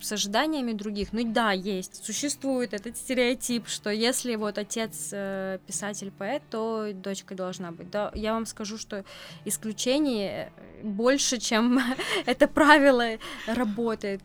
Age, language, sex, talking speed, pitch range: 20-39, Russian, female, 125 wpm, 200-245 Hz